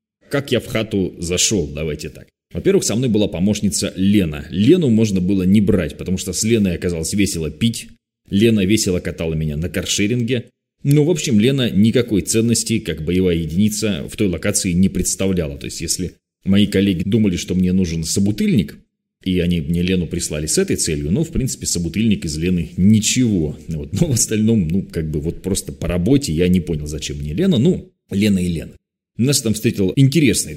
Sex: male